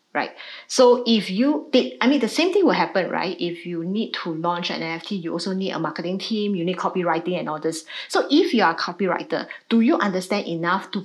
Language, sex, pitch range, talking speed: English, female, 180-240 Hz, 235 wpm